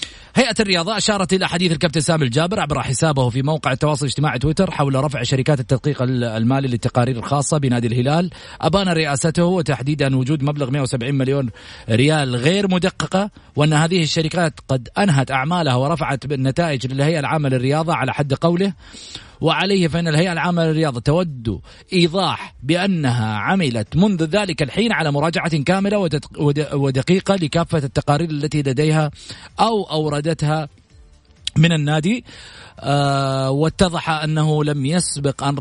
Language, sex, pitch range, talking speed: Arabic, male, 135-175 Hz, 130 wpm